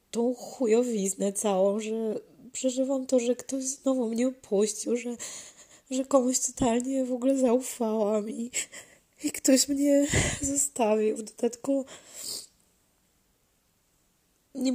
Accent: native